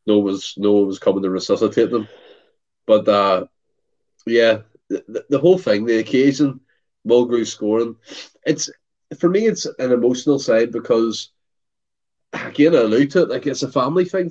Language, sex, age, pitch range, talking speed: English, male, 30-49, 105-140 Hz, 160 wpm